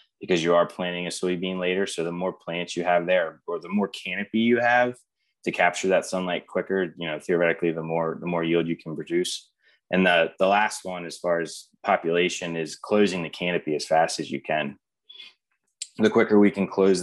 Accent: American